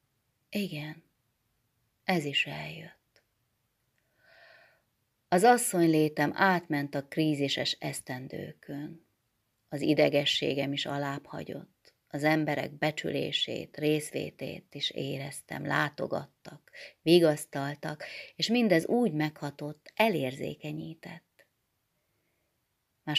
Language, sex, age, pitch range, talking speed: Hungarian, female, 30-49, 140-165 Hz, 70 wpm